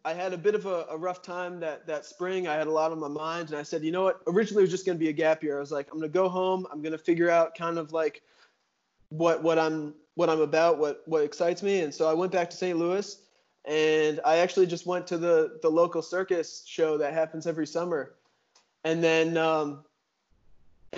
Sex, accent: male, American